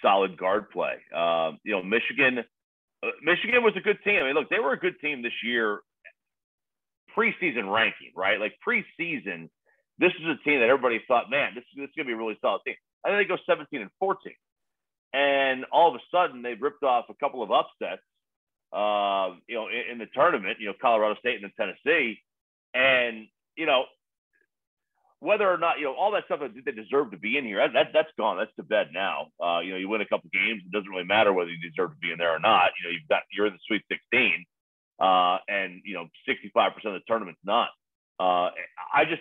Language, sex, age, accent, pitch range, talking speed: English, male, 40-59, American, 95-135 Hz, 225 wpm